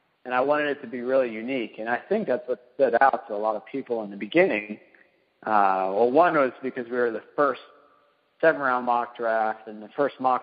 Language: English